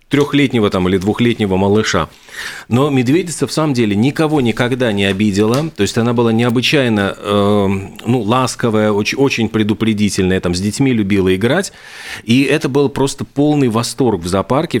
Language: Russian